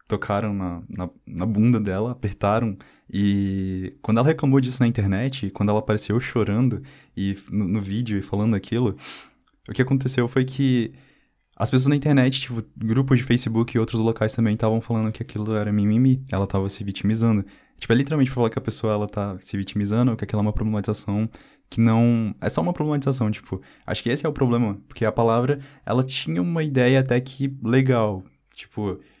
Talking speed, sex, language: 190 wpm, male, Portuguese